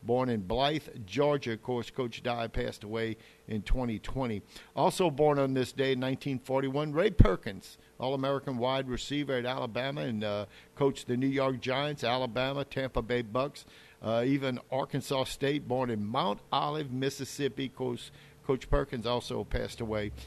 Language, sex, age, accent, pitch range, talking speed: English, male, 50-69, American, 115-140 Hz, 150 wpm